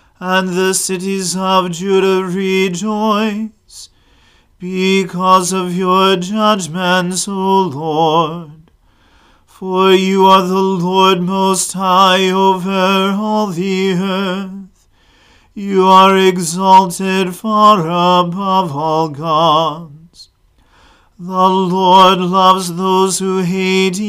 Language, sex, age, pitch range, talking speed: English, male, 40-59, 180-195 Hz, 90 wpm